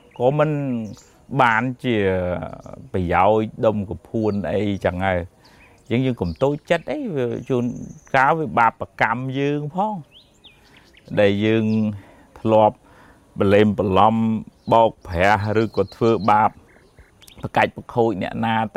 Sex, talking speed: male, 35 wpm